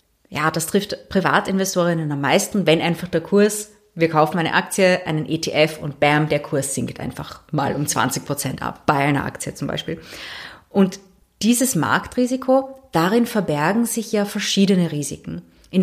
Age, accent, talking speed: 30-49, German, 160 wpm